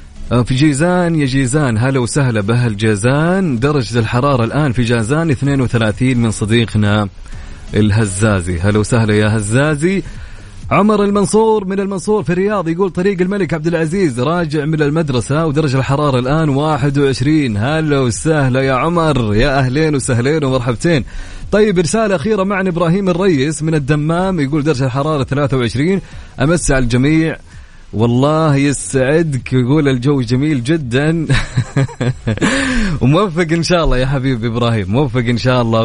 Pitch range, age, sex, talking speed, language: 110-155 Hz, 30-49, male, 130 wpm, Arabic